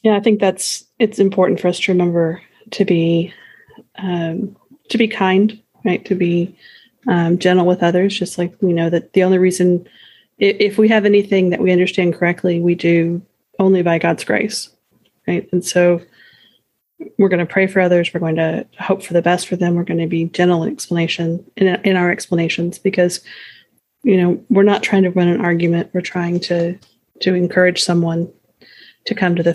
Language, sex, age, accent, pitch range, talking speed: English, female, 30-49, American, 175-195 Hz, 195 wpm